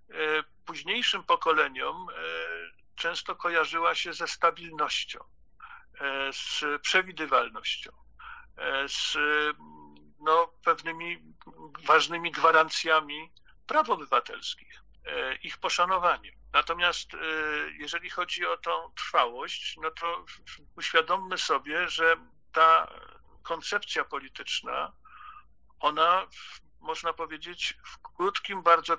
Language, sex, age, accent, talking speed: Polish, male, 50-69, native, 80 wpm